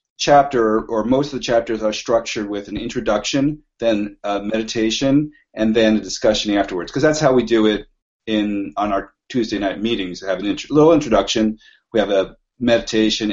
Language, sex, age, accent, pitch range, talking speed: English, male, 40-59, American, 100-120 Hz, 180 wpm